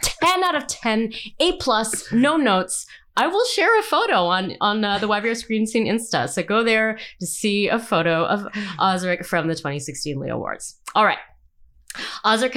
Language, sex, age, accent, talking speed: English, female, 30-49, American, 180 wpm